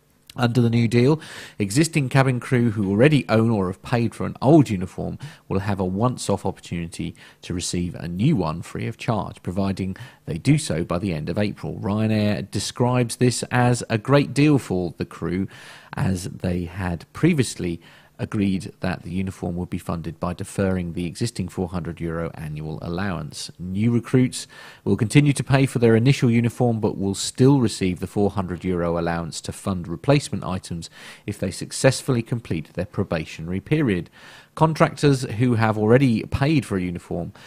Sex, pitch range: male, 90-125 Hz